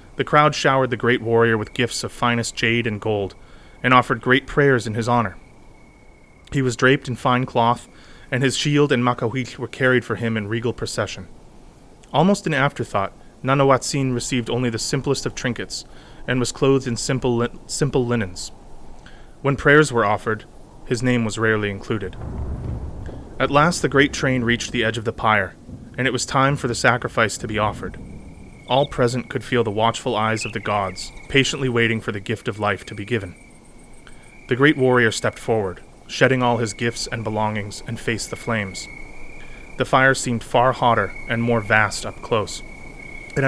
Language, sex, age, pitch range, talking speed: English, male, 30-49, 110-130 Hz, 180 wpm